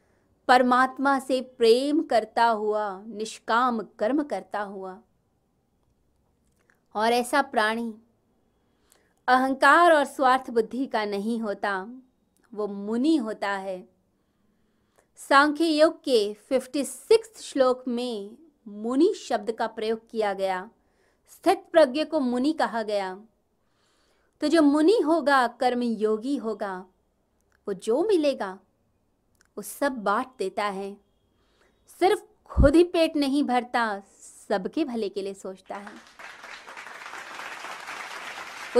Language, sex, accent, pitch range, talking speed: Hindi, female, native, 215-290 Hz, 105 wpm